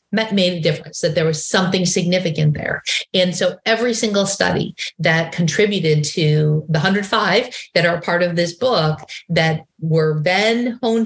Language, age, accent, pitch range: English, 30-49, American, 165-205 Hz